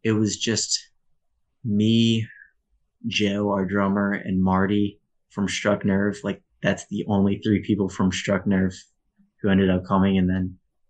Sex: male